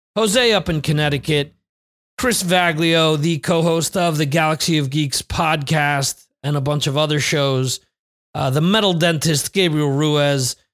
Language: English